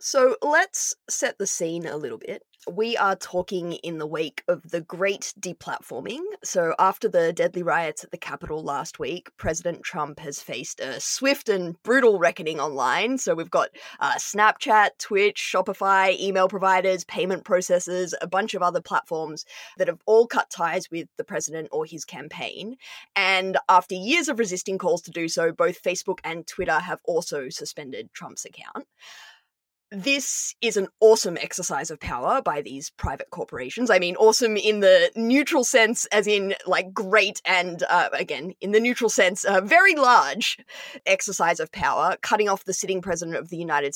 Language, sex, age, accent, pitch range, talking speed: English, female, 20-39, Australian, 175-225 Hz, 170 wpm